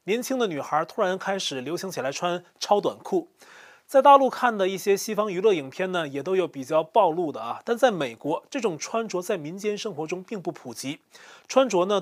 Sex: male